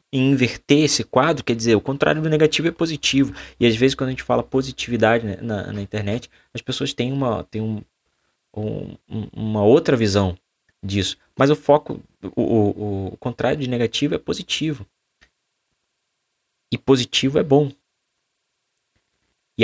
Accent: Brazilian